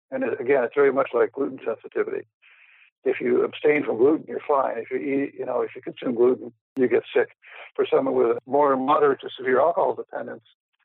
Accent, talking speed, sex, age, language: American, 200 wpm, male, 60-79, English